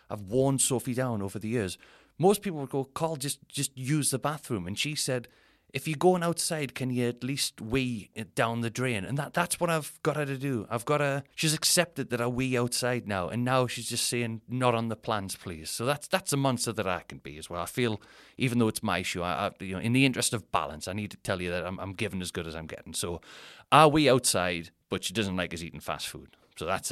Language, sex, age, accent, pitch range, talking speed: English, male, 30-49, British, 105-140 Hz, 250 wpm